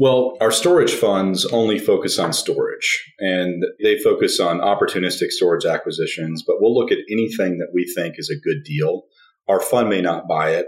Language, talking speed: English, 185 wpm